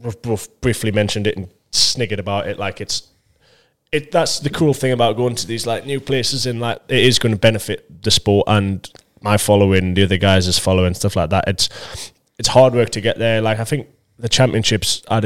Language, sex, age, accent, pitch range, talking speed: English, male, 20-39, British, 100-115 Hz, 210 wpm